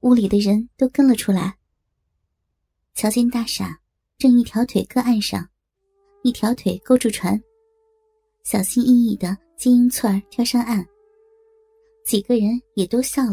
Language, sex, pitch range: Chinese, male, 215-330 Hz